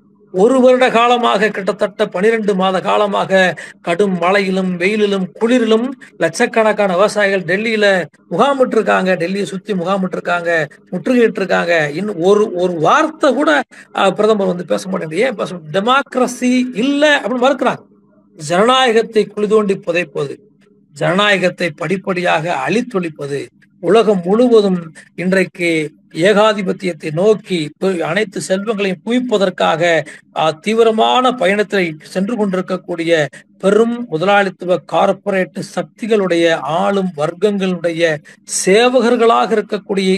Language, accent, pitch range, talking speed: Tamil, native, 175-220 Hz, 80 wpm